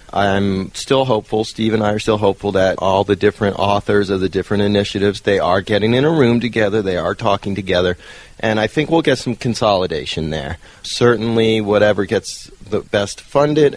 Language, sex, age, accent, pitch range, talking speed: English, male, 40-59, American, 95-110 Hz, 185 wpm